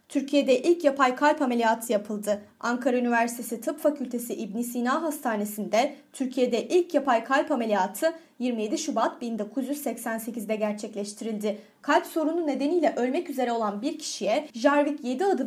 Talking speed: 130 wpm